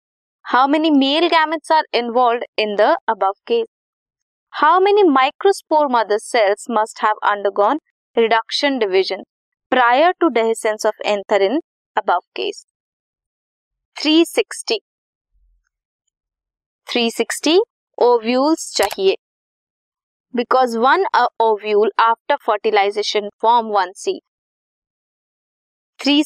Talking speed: 100 wpm